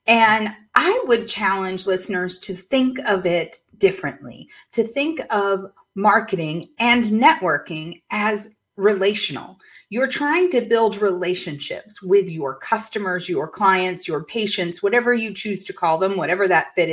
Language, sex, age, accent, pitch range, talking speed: English, female, 40-59, American, 180-245 Hz, 140 wpm